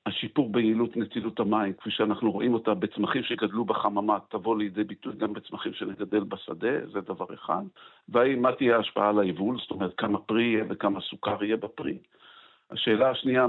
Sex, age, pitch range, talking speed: male, 50-69, 100-115 Hz, 170 wpm